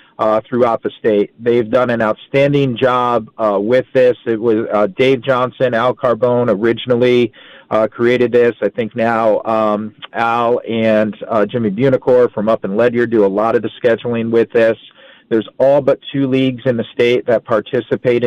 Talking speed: 175 wpm